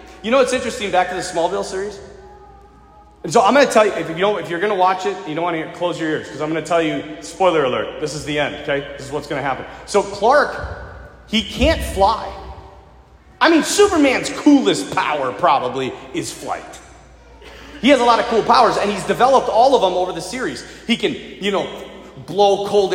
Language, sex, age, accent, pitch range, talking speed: English, male, 30-49, American, 170-235 Hz, 225 wpm